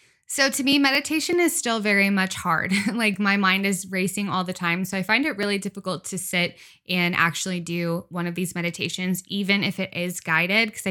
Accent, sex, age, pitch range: American, female, 10-29, 180-215 Hz